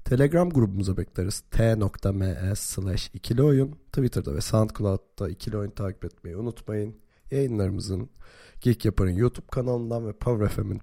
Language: Turkish